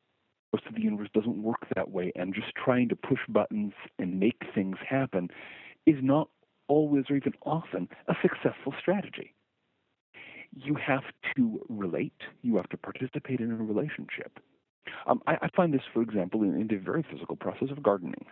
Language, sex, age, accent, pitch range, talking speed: English, male, 50-69, American, 95-140 Hz, 175 wpm